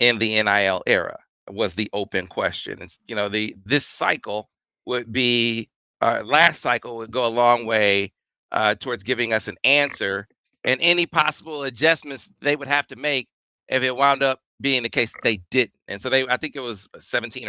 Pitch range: 105-140 Hz